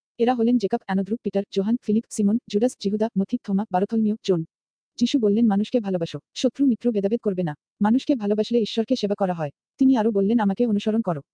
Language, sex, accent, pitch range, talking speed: Bengali, female, native, 205-235 Hz, 185 wpm